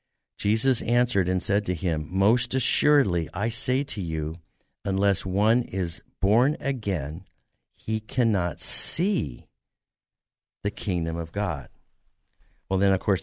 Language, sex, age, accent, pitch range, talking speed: English, male, 60-79, American, 90-115 Hz, 125 wpm